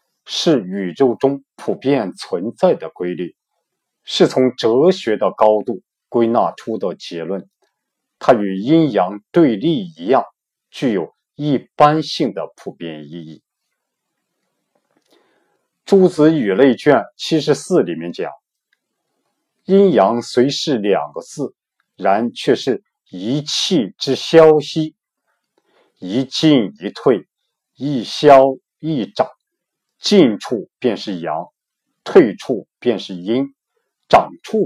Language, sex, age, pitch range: Chinese, male, 50-69, 115-165 Hz